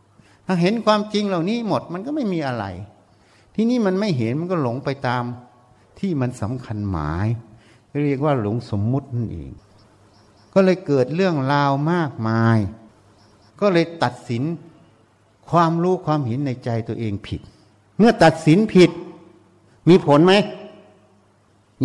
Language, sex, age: Thai, male, 60-79